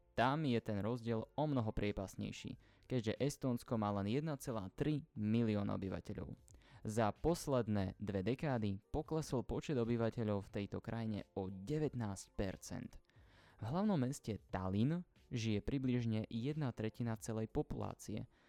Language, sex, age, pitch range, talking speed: Slovak, male, 20-39, 105-135 Hz, 115 wpm